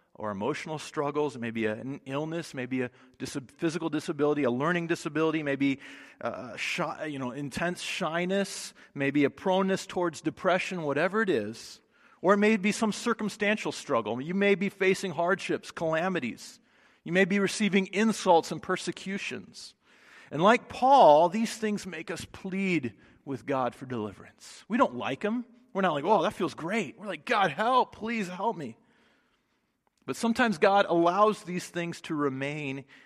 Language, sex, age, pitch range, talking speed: English, male, 40-59, 130-190 Hz, 155 wpm